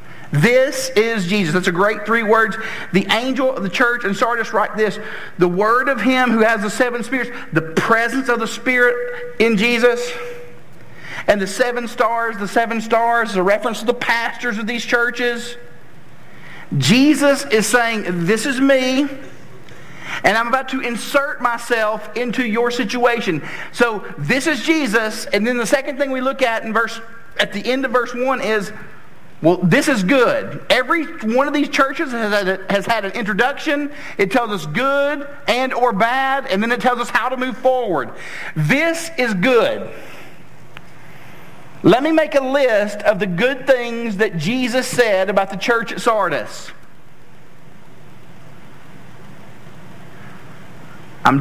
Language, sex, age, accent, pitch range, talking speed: English, male, 50-69, American, 210-255 Hz, 155 wpm